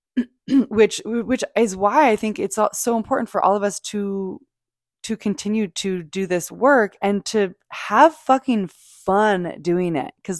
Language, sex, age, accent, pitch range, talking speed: English, female, 20-39, American, 160-205 Hz, 160 wpm